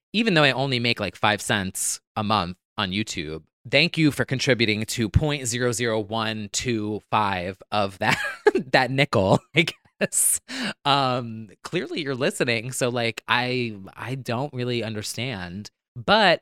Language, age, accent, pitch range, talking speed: English, 20-39, American, 105-130 Hz, 130 wpm